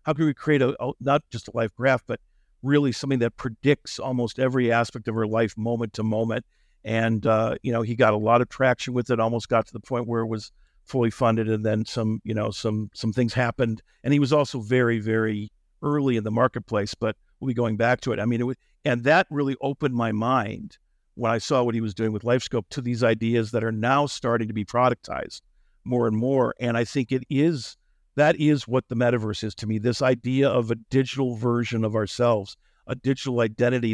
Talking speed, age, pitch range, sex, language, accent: 230 wpm, 50-69, 110-130 Hz, male, English, American